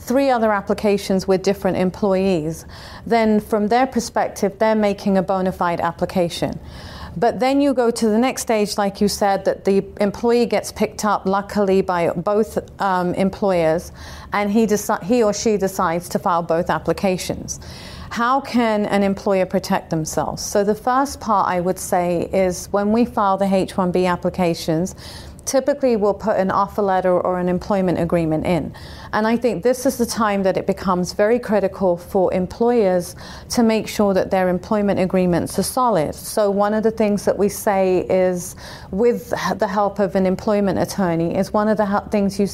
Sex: female